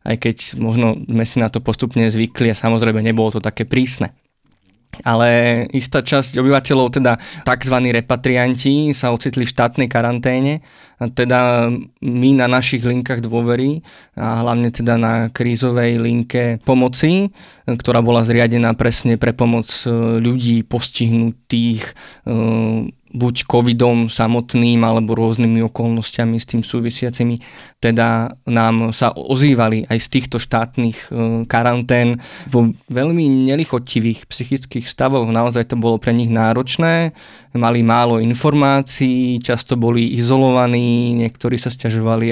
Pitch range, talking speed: 115-125 Hz, 125 wpm